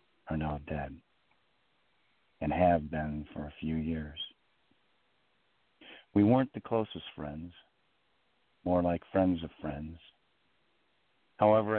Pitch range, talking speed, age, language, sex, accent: 80-95 Hz, 105 wpm, 50-69, English, male, American